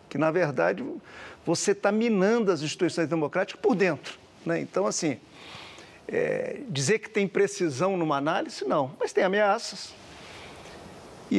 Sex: male